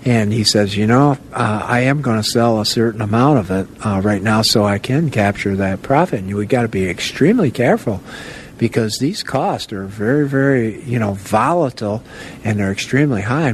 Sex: male